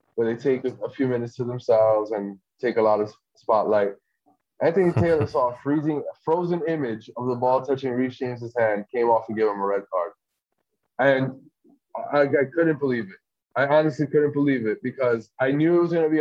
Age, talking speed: 20-39, 205 wpm